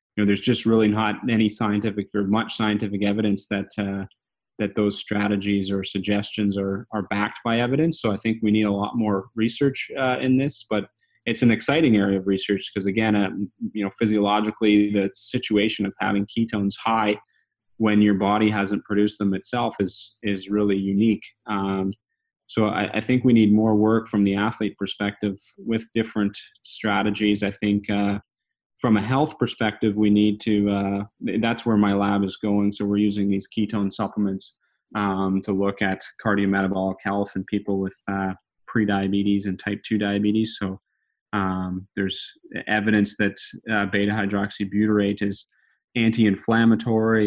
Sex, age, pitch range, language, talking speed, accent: male, 30-49, 100-110 Hz, English, 165 wpm, American